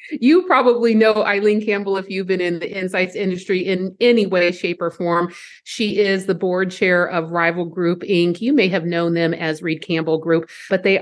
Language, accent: English, American